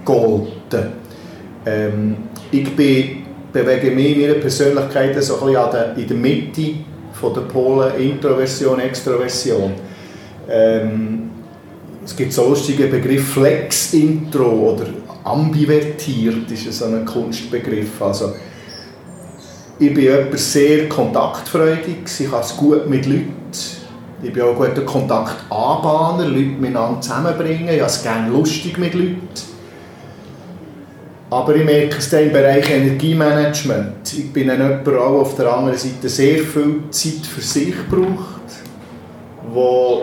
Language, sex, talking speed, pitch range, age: German, male, 120 wpm, 120-150 Hz, 40-59